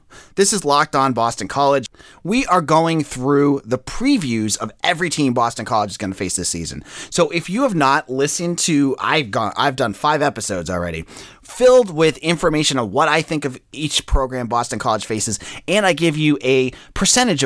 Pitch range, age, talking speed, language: 120-170 Hz, 30-49, 185 wpm, English